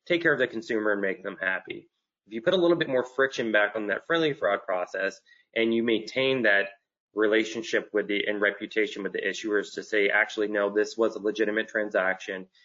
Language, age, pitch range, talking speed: English, 30-49, 100-125 Hz, 210 wpm